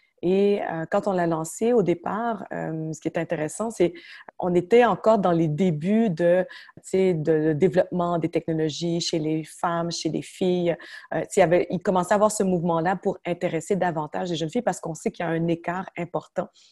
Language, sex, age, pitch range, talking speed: French, female, 30-49, 160-190 Hz, 195 wpm